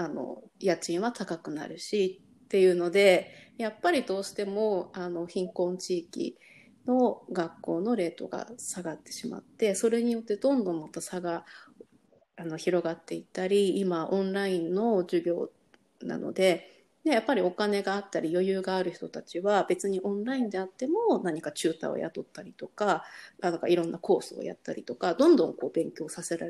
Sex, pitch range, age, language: female, 175-210 Hz, 30-49, Japanese